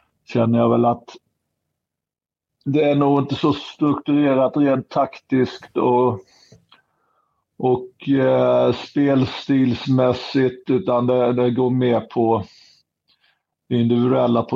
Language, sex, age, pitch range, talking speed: Swedish, male, 50-69, 110-125 Hz, 95 wpm